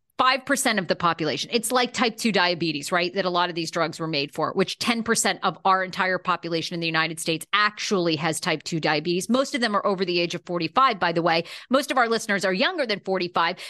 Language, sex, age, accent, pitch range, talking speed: English, female, 40-59, American, 180-265 Hz, 245 wpm